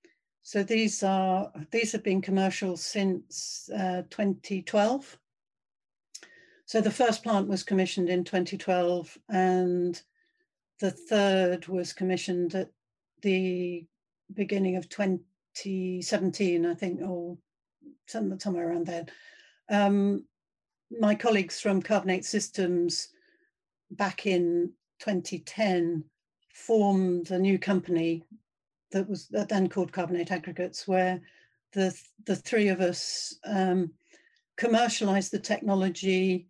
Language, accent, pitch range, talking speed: English, British, 180-210 Hz, 105 wpm